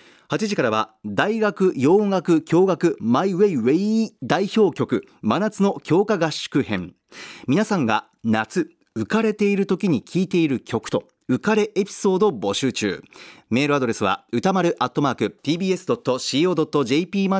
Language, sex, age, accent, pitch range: Japanese, male, 40-59, native, 125-205 Hz